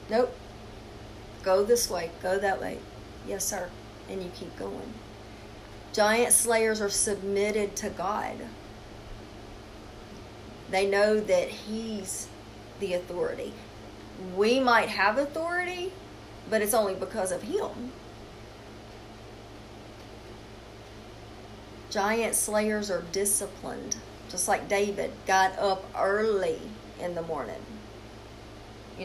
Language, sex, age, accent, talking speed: English, female, 40-59, American, 100 wpm